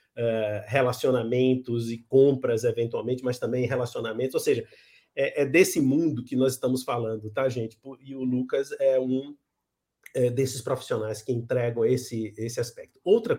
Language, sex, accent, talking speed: Portuguese, male, Brazilian, 140 wpm